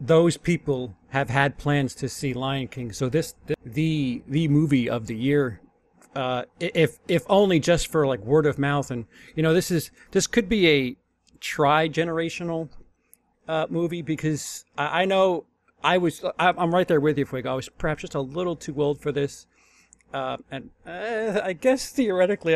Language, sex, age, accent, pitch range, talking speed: English, male, 40-59, American, 140-170 Hz, 185 wpm